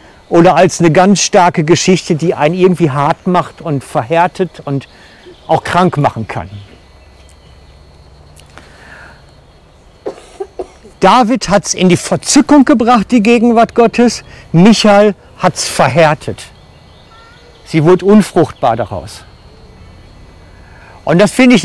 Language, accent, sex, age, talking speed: German, German, male, 50-69, 110 wpm